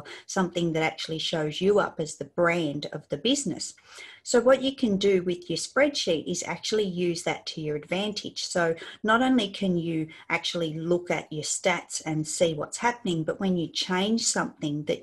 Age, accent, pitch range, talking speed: 40-59, Australian, 155-205 Hz, 190 wpm